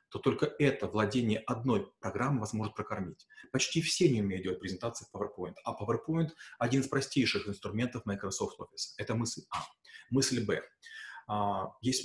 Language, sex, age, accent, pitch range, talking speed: Russian, male, 30-49, native, 105-135 Hz, 155 wpm